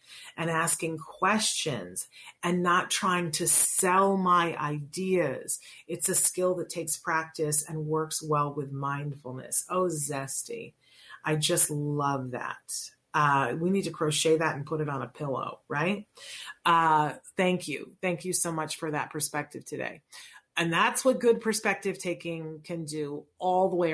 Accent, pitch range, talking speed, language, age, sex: American, 155-185 Hz, 155 wpm, English, 30-49, female